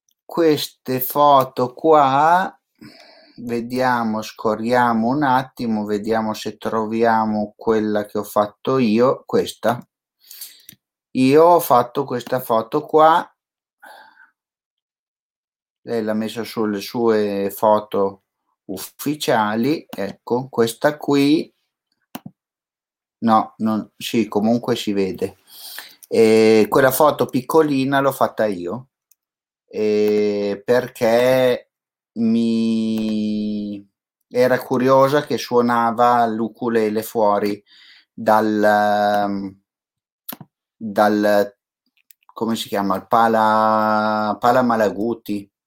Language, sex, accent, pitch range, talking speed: Italian, male, native, 105-125 Hz, 80 wpm